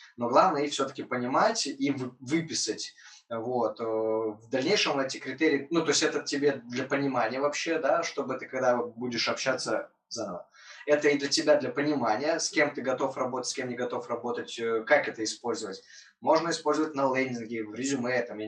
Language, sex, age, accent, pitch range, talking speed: Russian, male, 20-39, native, 120-145 Hz, 170 wpm